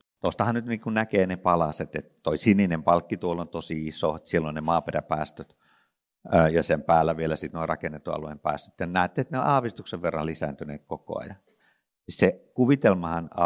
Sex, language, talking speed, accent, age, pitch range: male, Finnish, 170 wpm, native, 60-79, 80-95 Hz